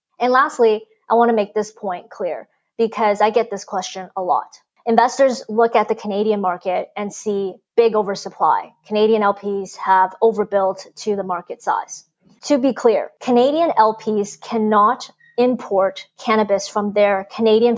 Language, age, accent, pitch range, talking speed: English, 20-39, American, 200-235 Hz, 150 wpm